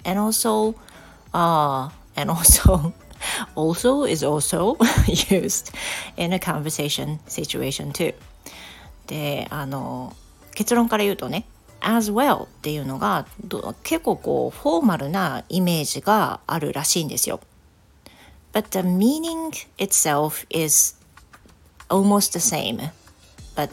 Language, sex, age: Japanese, female, 40-59